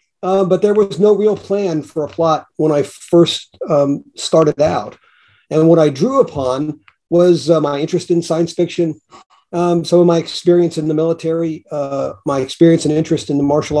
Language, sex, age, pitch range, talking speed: English, male, 50-69, 145-175 Hz, 190 wpm